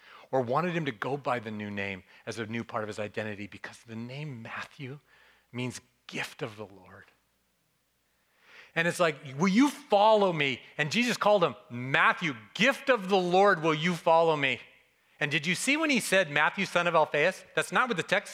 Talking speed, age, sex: 200 wpm, 40-59, male